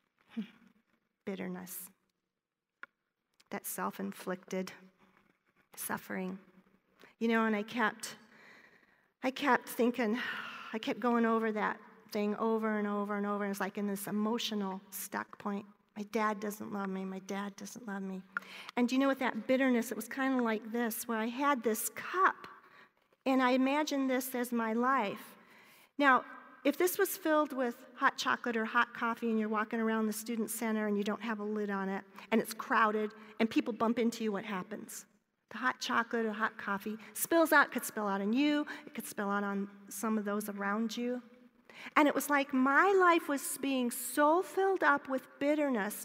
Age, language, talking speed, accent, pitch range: 40-59, English, 180 wpm, American, 210-260 Hz